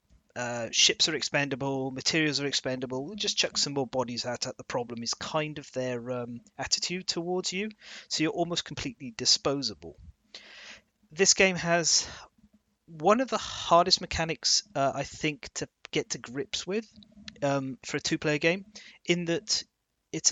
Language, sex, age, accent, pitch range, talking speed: English, male, 30-49, British, 125-170 Hz, 160 wpm